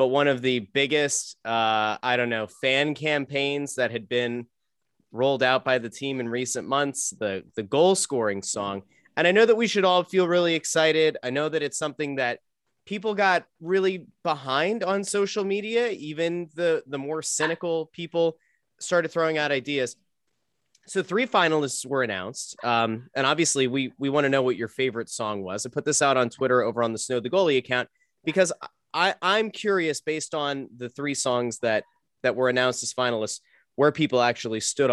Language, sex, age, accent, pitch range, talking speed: English, male, 30-49, American, 120-155 Hz, 190 wpm